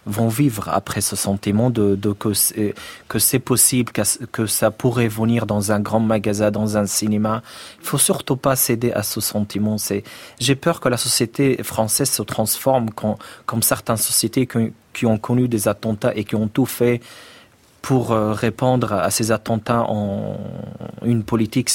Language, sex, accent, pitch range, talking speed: French, male, French, 105-130 Hz, 175 wpm